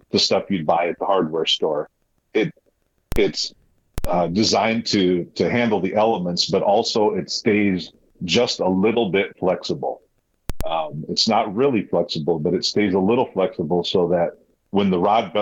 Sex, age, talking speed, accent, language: male, 40-59, 165 wpm, American, English